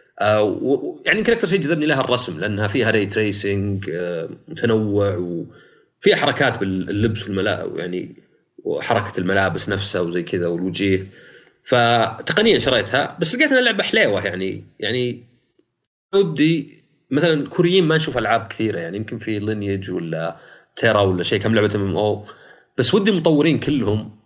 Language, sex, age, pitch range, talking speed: Arabic, male, 30-49, 100-150 Hz, 135 wpm